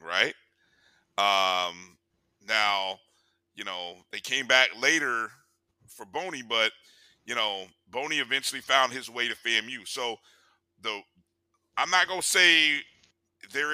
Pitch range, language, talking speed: 90-150 Hz, English, 125 wpm